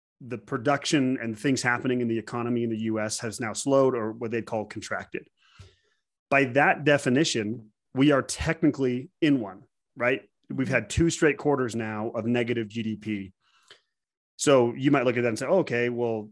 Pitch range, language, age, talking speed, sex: 110-140 Hz, English, 30-49, 175 wpm, male